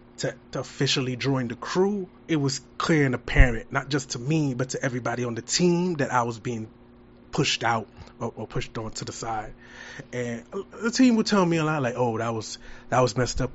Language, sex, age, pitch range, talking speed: English, male, 20-39, 115-135 Hz, 220 wpm